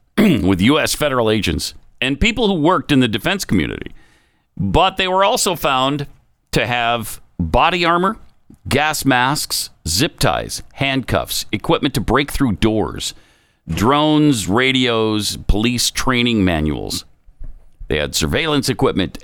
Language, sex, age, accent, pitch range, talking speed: English, male, 50-69, American, 95-150 Hz, 125 wpm